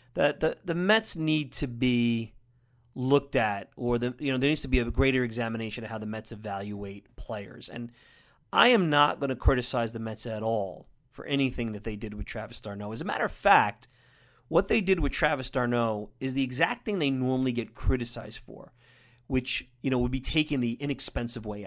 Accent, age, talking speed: American, 30-49, 205 wpm